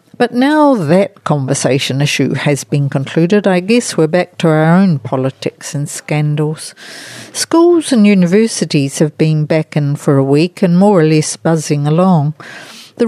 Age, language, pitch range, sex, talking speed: 60-79, English, 150-200 Hz, female, 160 wpm